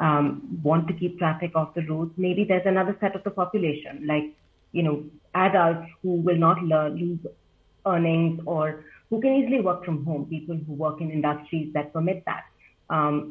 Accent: Indian